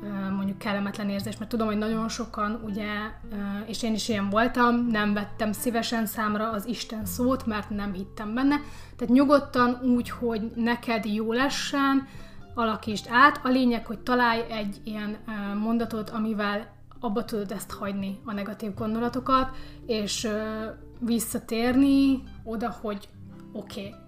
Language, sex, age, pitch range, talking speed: Hungarian, female, 30-49, 210-240 Hz, 135 wpm